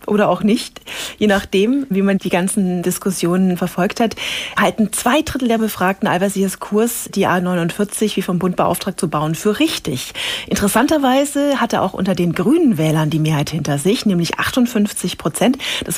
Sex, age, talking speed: female, 30-49, 160 wpm